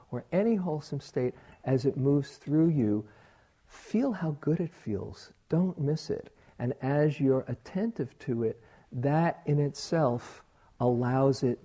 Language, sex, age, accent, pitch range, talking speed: English, male, 50-69, American, 105-135 Hz, 145 wpm